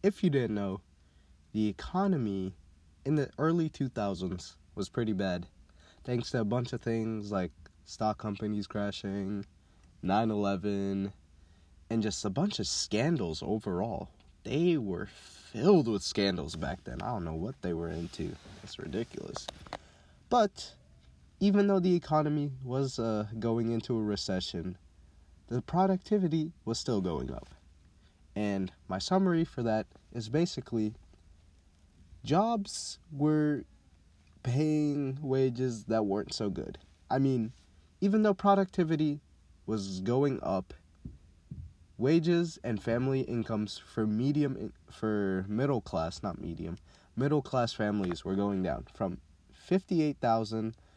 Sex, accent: male, American